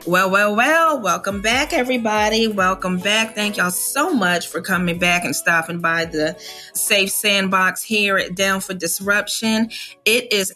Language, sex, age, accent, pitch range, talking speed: English, female, 30-49, American, 165-215 Hz, 160 wpm